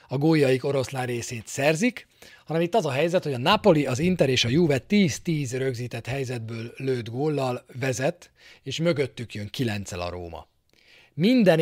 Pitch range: 115-150 Hz